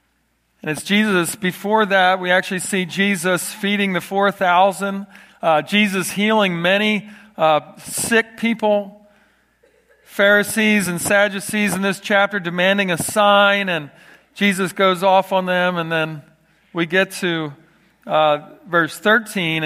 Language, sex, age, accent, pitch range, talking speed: English, male, 40-59, American, 175-215 Hz, 125 wpm